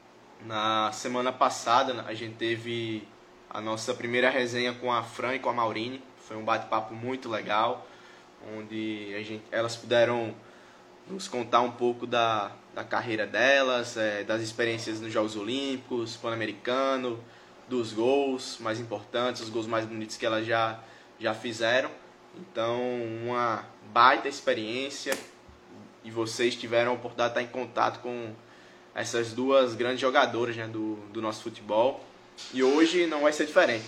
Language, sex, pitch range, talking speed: Portuguese, male, 110-125 Hz, 150 wpm